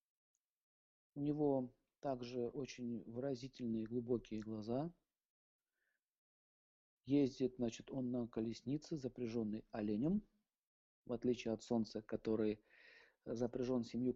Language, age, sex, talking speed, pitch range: Russian, 40-59, male, 90 wpm, 120-145 Hz